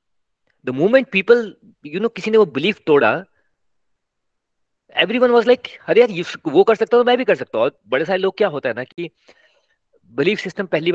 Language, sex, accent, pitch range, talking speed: Hindi, male, native, 145-220 Hz, 185 wpm